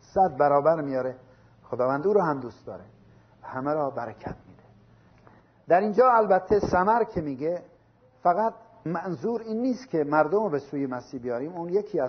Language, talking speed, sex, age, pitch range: Persian, 160 wpm, male, 50-69, 130-180 Hz